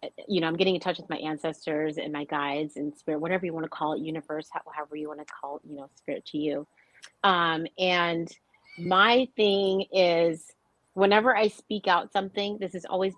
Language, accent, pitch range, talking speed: English, American, 150-180 Hz, 205 wpm